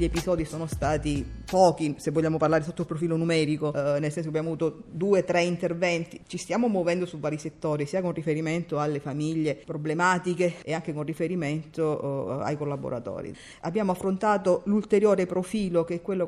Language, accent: Italian, native